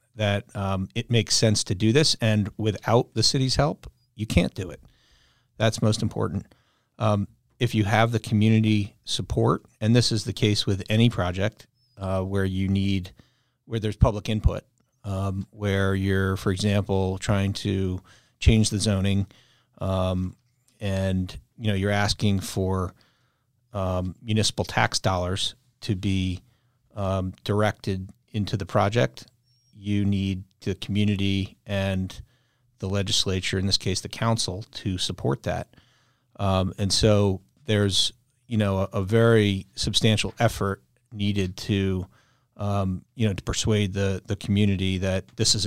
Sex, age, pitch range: male, 40-59, 95-115 Hz